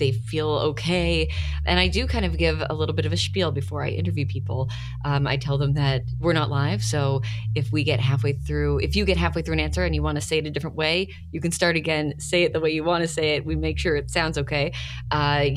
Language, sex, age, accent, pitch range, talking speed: English, female, 20-39, American, 90-125 Hz, 265 wpm